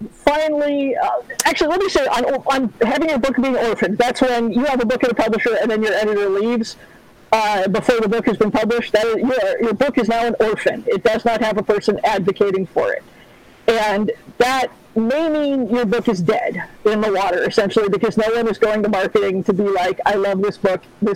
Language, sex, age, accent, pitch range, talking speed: English, female, 50-69, American, 215-260 Hz, 225 wpm